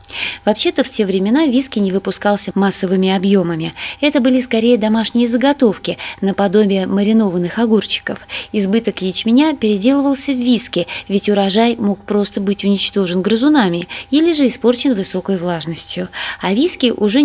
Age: 20-39